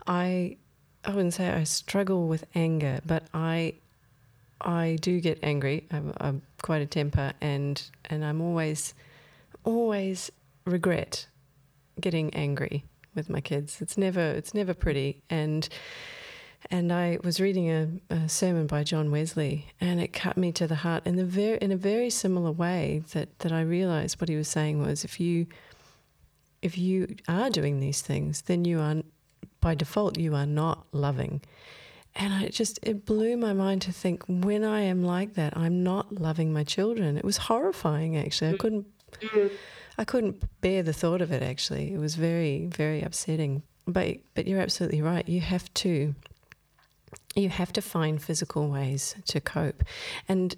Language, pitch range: English, 150-185 Hz